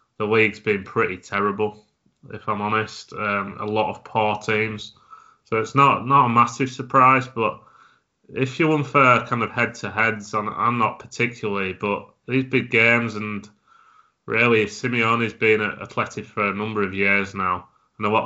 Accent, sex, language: British, male, English